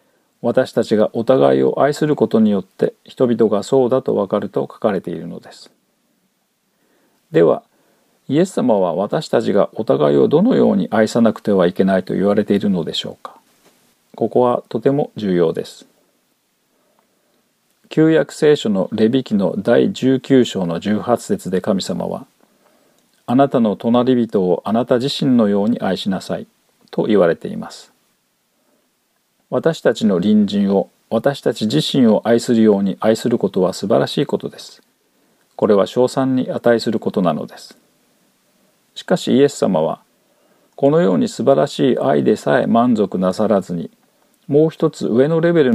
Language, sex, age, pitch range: Japanese, male, 40-59, 110-140 Hz